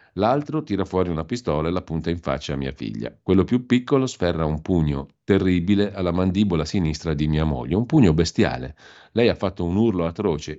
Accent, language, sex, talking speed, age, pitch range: native, Italian, male, 200 wpm, 50-69, 80-100 Hz